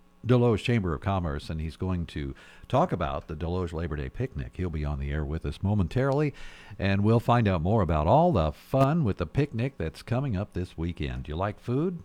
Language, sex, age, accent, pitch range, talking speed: English, male, 50-69, American, 80-115 Hz, 220 wpm